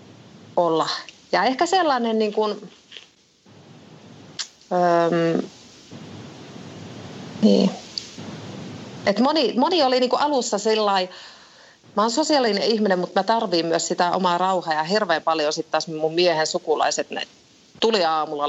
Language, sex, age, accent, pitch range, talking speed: Finnish, female, 30-49, native, 155-220 Hz, 115 wpm